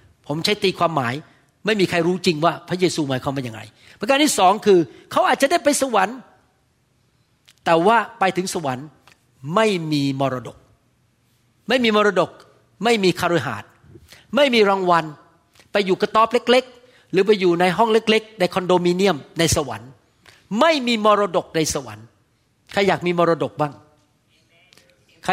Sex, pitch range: male, 155-215 Hz